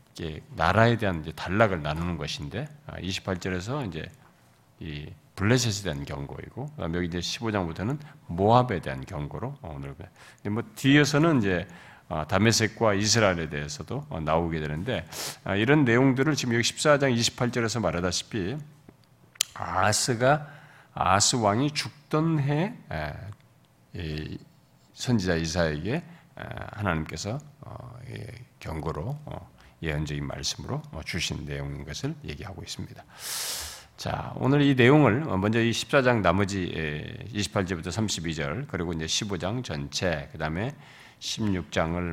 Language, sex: Korean, male